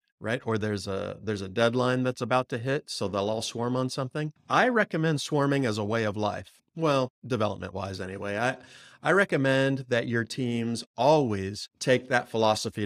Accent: American